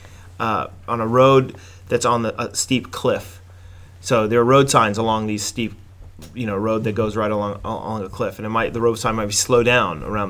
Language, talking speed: English, 225 wpm